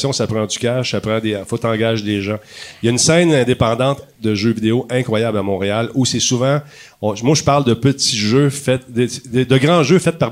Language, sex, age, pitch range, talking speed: French, male, 40-59, 110-140 Hz, 235 wpm